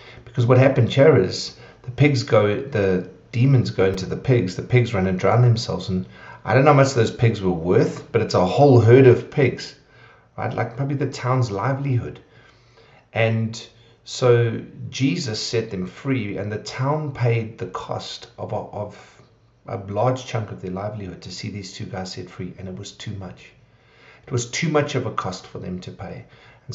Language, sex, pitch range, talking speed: English, male, 95-125 Hz, 195 wpm